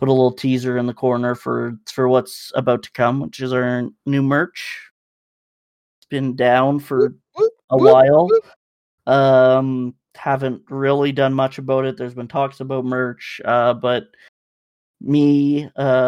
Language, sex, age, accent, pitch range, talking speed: English, male, 30-49, American, 125-145 Hz, 150 wpm